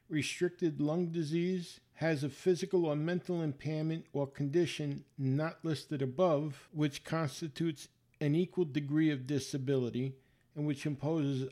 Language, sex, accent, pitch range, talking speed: English, male, American, 130-180 Hz, 125 wpm